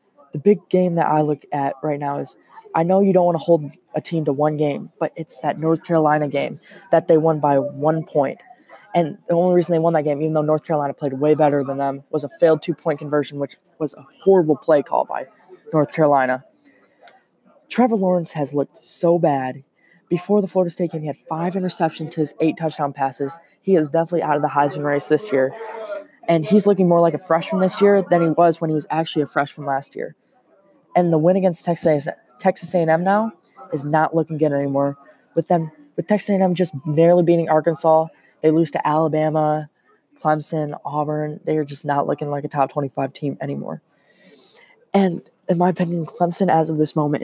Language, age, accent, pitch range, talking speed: English, 20-39, American, 145-175 Hz, 205 wpm